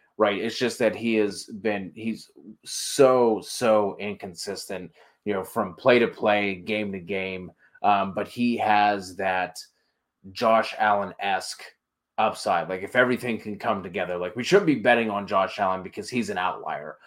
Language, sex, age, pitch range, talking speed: English, male, 30-49, 95-110 Hz, 160 wpm